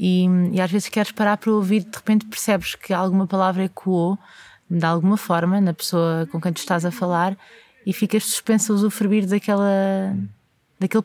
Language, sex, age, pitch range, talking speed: Portuguese, female, 20-39, 175-210 Hz, 180 wpm